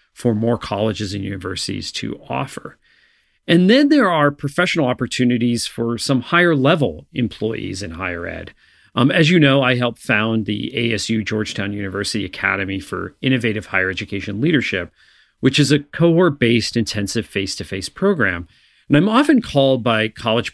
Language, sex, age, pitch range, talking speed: English, male, 40-59, 105-145 Hz, 150 wpm